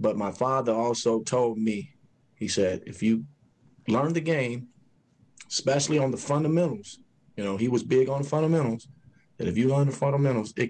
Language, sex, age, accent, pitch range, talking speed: English, male, 30-49, American, 100-130 Hz, 180 wpm